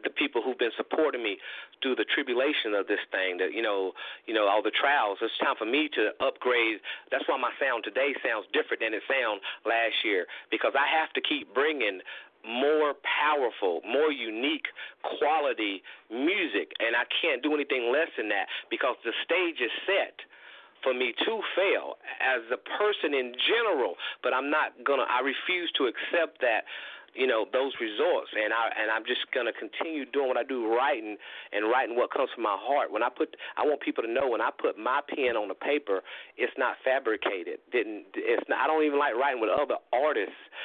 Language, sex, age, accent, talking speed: English, male, 40-59, American, 200 wpm